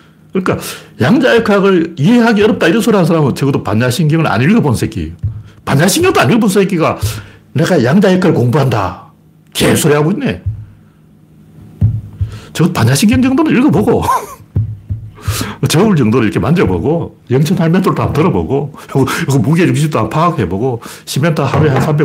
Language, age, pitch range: Korean, 60-79, 105-160 Hz